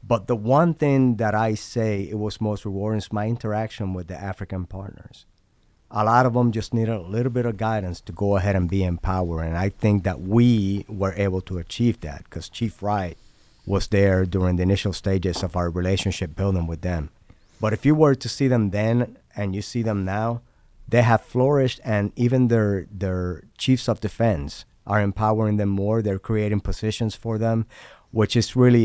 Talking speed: 200 wpm